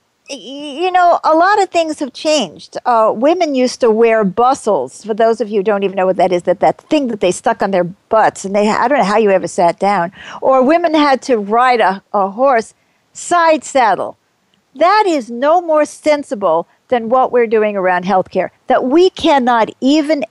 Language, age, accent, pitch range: English, 50-69, American, 195-285 Hz